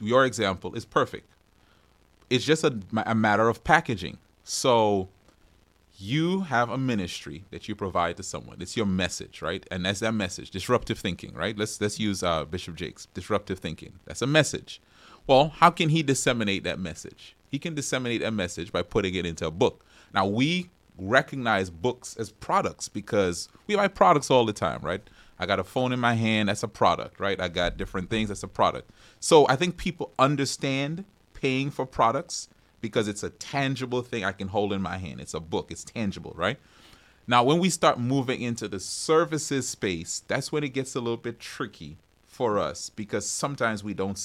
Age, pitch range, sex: 30-49, 95-130 Hz, male